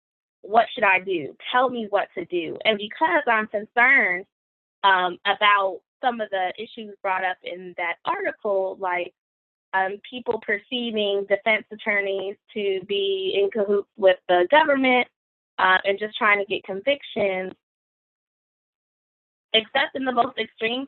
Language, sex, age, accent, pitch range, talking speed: English, female, 20-39, American, 190-235 Hz, 140 wpm